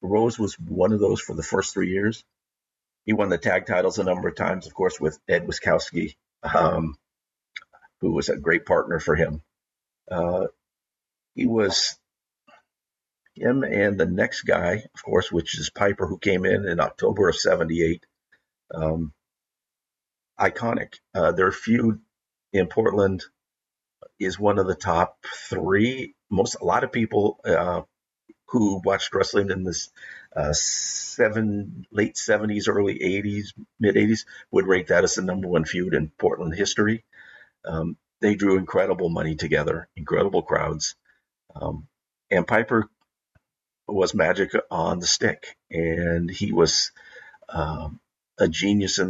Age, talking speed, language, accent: 50-69, 150 wpm, English, American